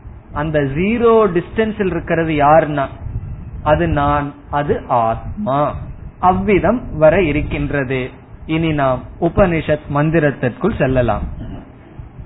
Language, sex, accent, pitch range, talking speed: Tamil, male, native, 150-195 Hz, 85 wpm